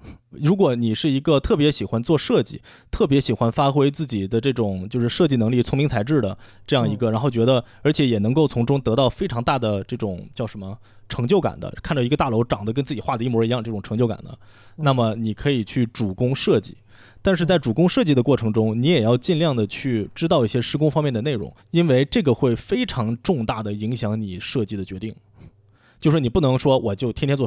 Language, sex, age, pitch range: Chinese, male, 20-39, 110-145 Hz